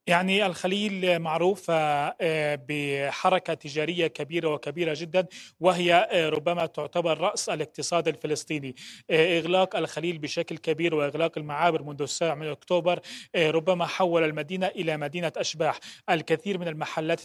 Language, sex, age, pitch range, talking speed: Arabic, male, 30-49, 155-180 Hz, 115 wpm